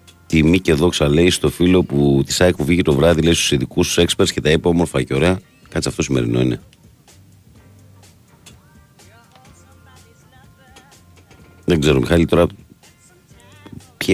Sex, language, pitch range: male, Greek, 70-90 Hz